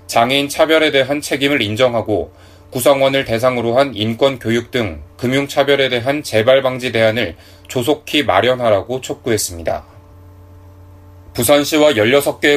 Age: 30-49